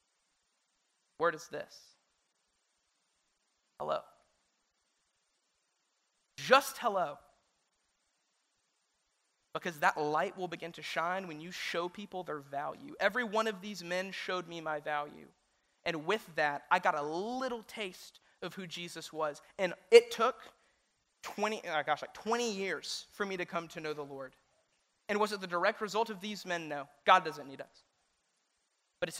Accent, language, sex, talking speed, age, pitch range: American, English, male, 150 wpm, 20-39, 150-190 Hz